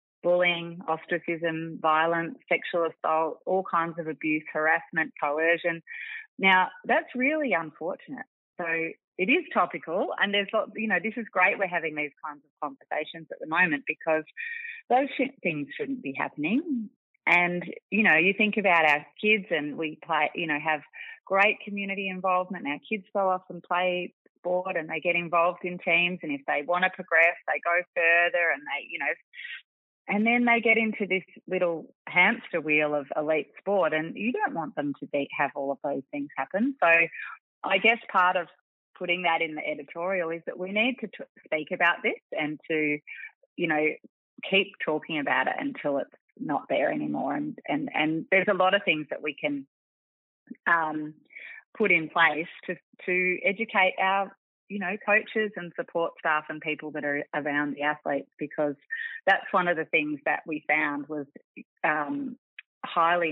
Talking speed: 180 wpm